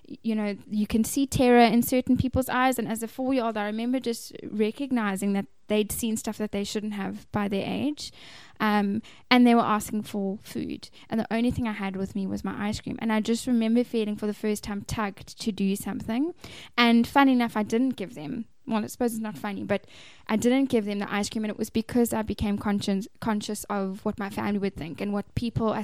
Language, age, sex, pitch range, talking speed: English, 10-29, female, 200-230 Hz, 230 wpm